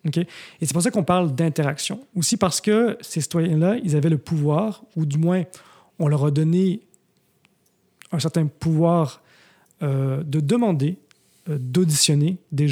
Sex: male